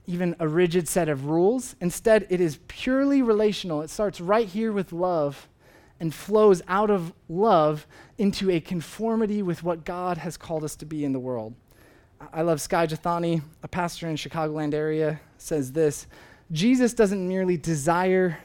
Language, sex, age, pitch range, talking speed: English, male, 20-39, 160-205 Hz, 170 wpm